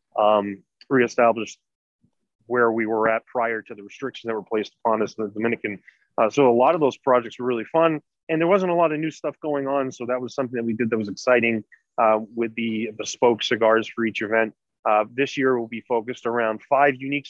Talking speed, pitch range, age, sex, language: 225 wpm, 110-125 Hz, 30-49, male, English